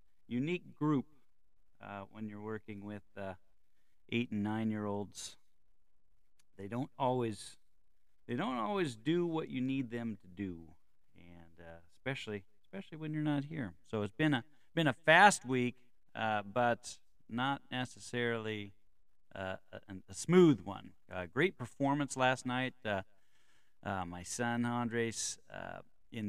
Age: 40-59